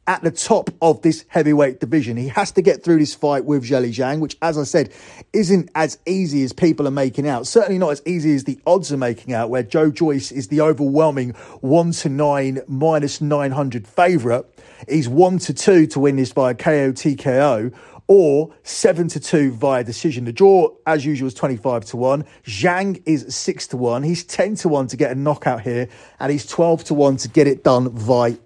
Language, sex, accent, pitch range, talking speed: English, male, British, 130-160 Hz, 210 wpm